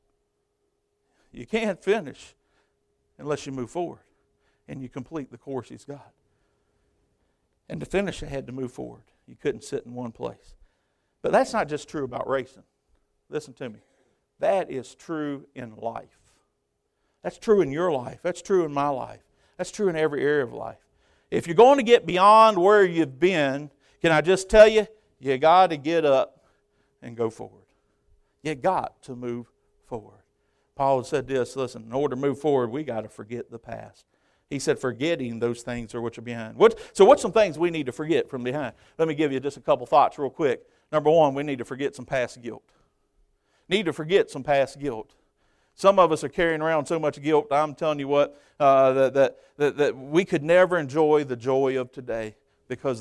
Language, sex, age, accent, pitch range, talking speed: English, male, 60-79, American, 130-175 Hz, 195 wpm